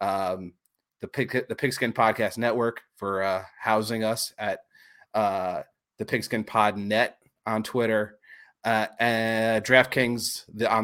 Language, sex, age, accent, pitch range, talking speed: English, male, 30-49, American, 100-115 Hz, 125 wpm